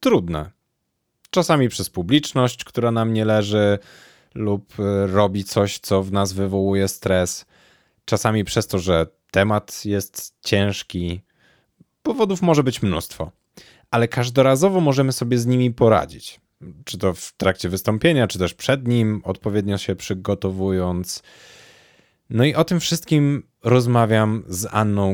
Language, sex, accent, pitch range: Polish, male, native, 95-140 Hz